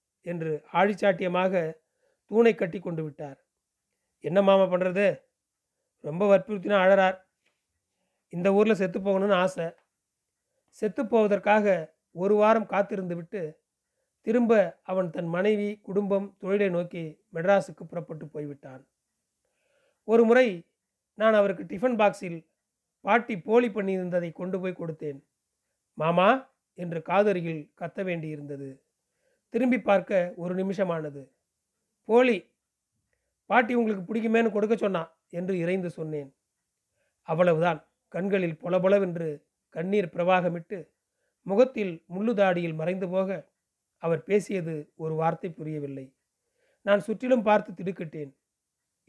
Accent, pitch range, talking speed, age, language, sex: native, 170-210 Hz, 100 wpm, 40-59, Tamil, male